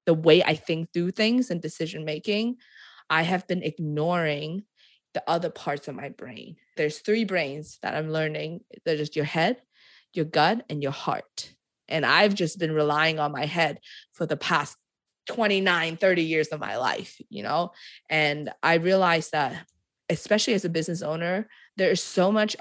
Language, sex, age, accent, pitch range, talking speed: English, female, 20-39, American, 155-195 Hz, 175 wpm